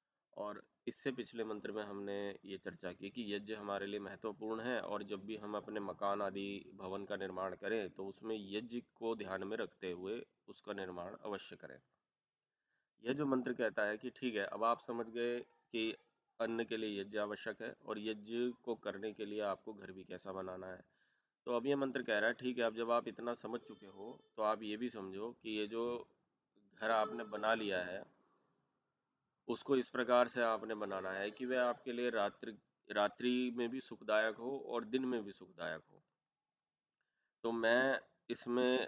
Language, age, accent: Hindi, 30-49, native